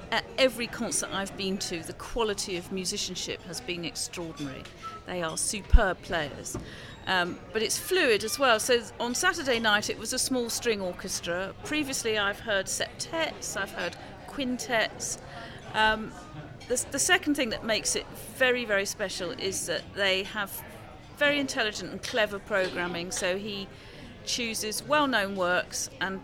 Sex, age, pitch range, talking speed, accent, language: female, 40-59, 185-235 Hz, 150 wpm, British, English